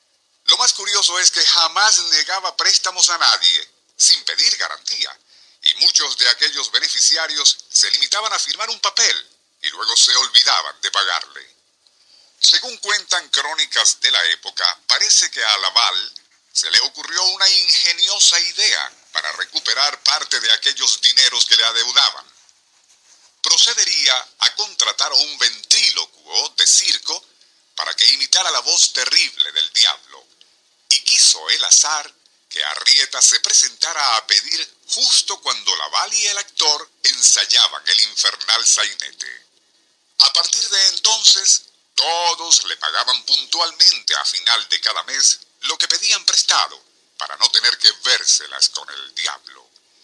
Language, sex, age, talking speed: Spanish, male, 50-69, 135 wpm